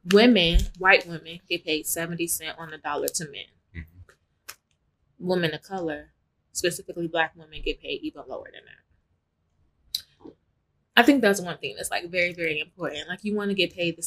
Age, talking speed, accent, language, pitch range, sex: 20-39, 175 wpm, American, English, 155-195 Hz, female